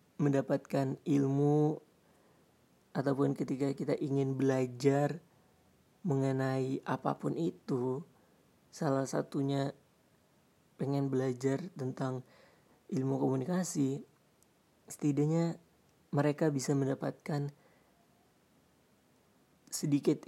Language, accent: Indonesian, native